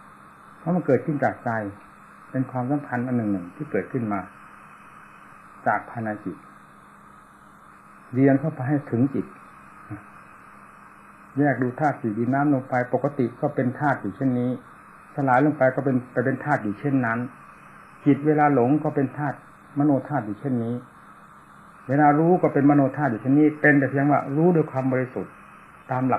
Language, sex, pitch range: Thai, male, 115-145 Hz